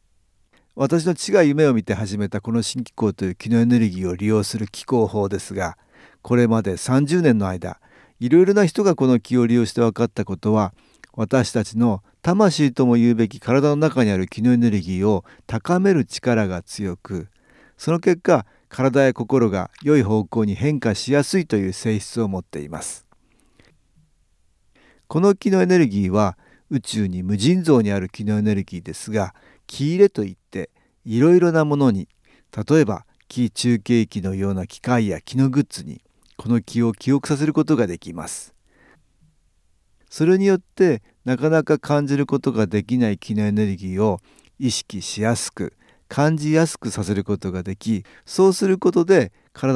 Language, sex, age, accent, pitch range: Japanese, male, 50-69, native, 100-140 Hz